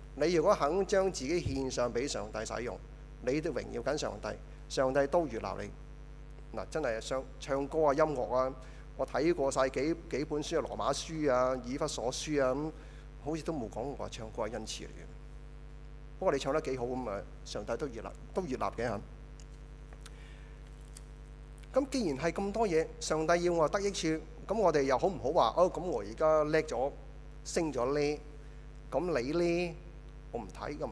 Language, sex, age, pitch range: Chinese, male, 30-49, 135-155 Hz